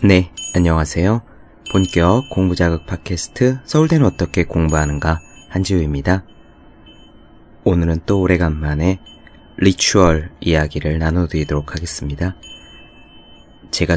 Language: Korean